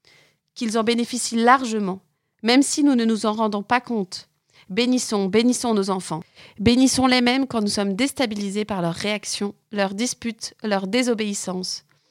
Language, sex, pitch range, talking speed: French, female, 195-245 Hz, 150 wpm